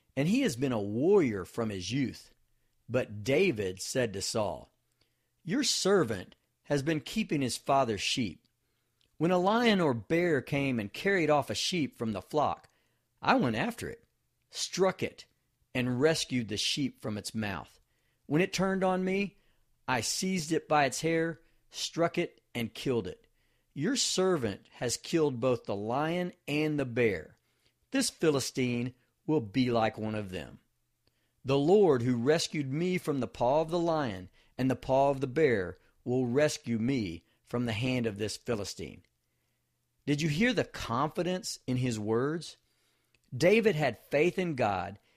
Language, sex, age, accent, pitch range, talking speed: English, male, 50-69, American, 115-165 Hz, 160 wpm